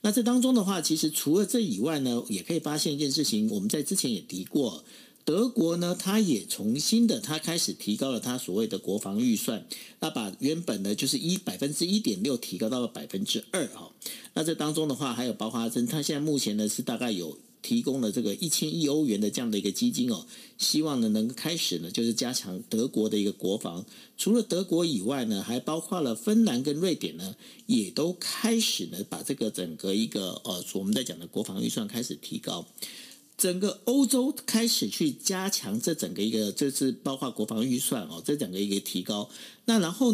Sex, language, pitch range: male, Chinese, 140-230 Hz